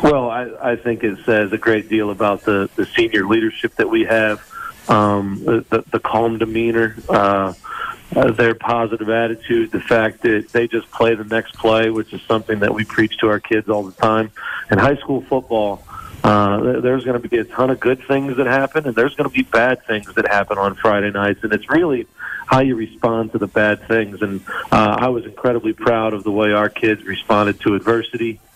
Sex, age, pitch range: male, 40-59, 105-120 Hz